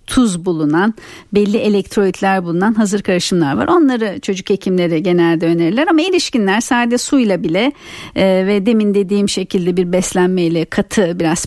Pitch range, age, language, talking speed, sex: 180-225 Hz, 50-69, Turkish, 140 wpm, female